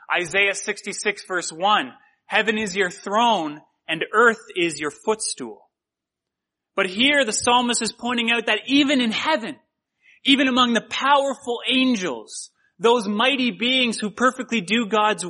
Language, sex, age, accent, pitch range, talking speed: English, male, 30-49, American, 195-245 Hz, 140 wpm